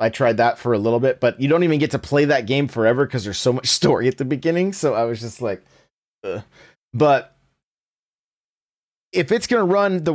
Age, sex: 30-49, male